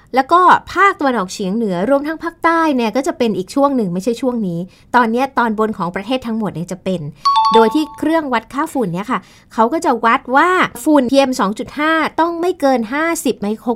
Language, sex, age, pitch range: Thai, female, 20-39, 195-275 Hz